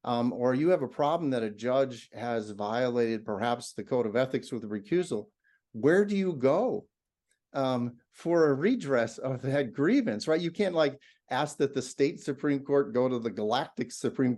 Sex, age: male, 50-69